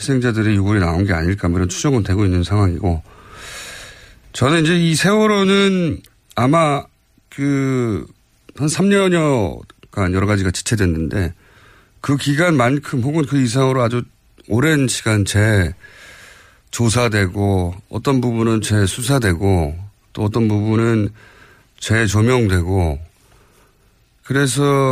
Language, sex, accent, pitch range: Korean, male, native, 100-140 Hz